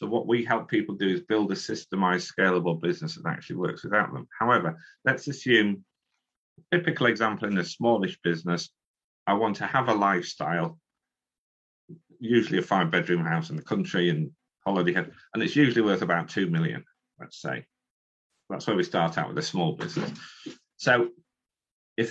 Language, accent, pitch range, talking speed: English, British, 90-145 Hz, 175 wpm